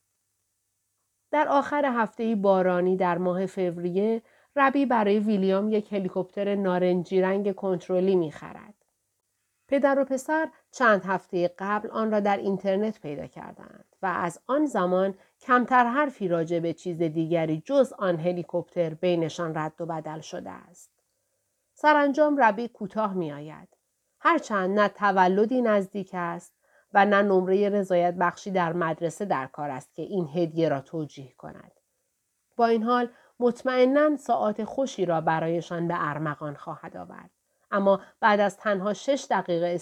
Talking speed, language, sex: 135 wpm, Persian, female